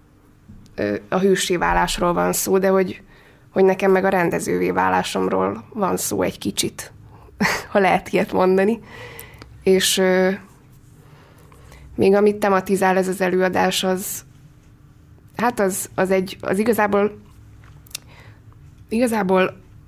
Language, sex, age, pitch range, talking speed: Hungarian, female, 20-39, 115-195 Hz, 110 wpm